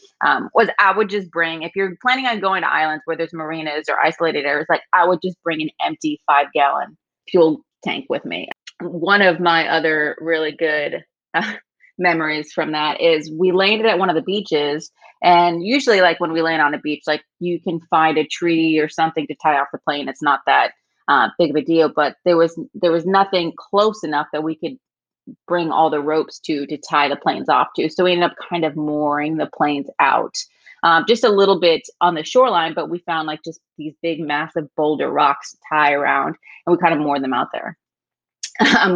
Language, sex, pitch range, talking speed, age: English, female, 155-180 Hz, 215 wpm, 30-49